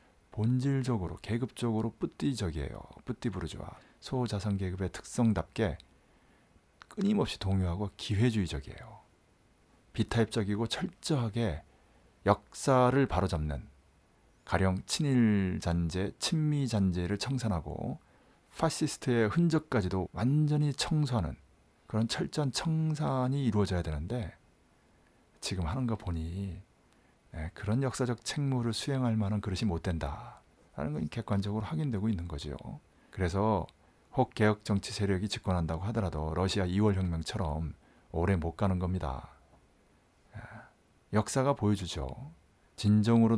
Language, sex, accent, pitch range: Korean, male, native, 90-120 Hz